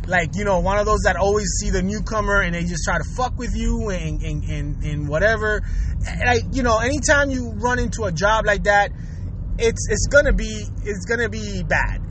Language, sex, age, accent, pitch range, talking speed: English, male, 20-39, American, 175-265 Hz, 215 wpm